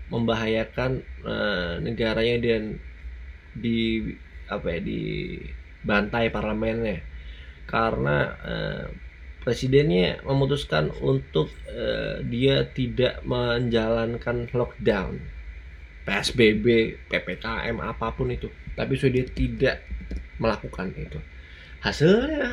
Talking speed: 85 wpm